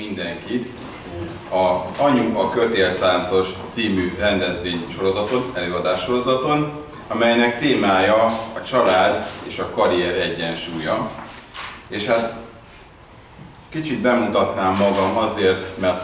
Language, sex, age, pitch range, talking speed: Hungarian, male, 30-49, 95-115 Hz, 95 wpm